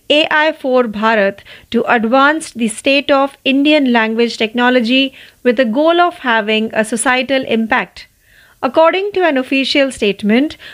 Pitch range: 225-295 Hz